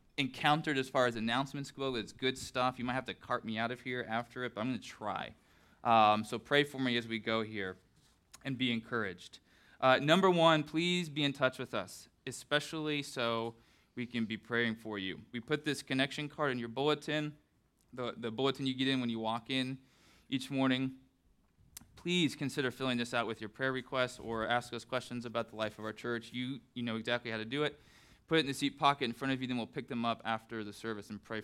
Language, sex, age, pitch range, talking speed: English, male, 20-39, 115-135 Hz, 230 wpm